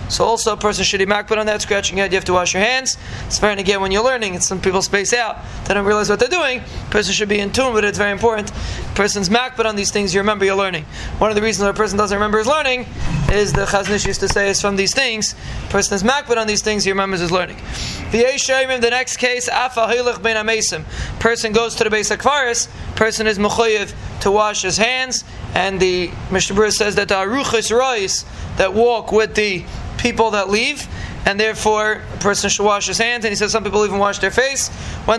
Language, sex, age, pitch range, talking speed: English, male, 20-39, 195-230 Hz, 235 wpm